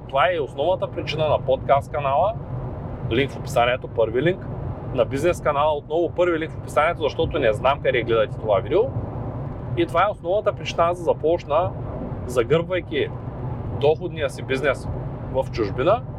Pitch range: 125-145 Hz